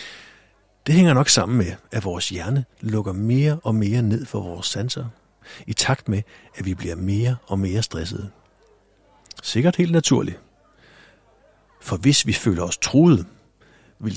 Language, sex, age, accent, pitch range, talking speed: Danish, male, 60-79, native, 95-135 Hz, 150 wpm